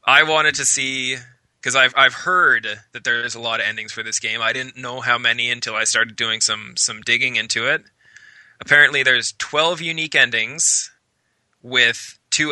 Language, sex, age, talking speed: English, male, 20-39, 180 wpm